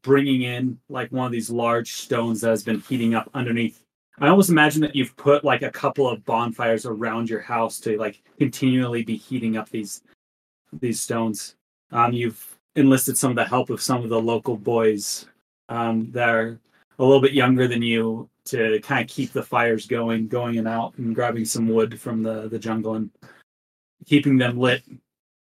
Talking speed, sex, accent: 190 wpm, male, American